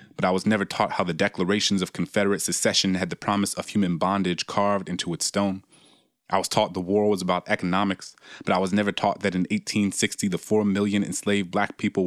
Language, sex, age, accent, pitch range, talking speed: English, male, 30-49, American, 90-100 Hz, 215 wpm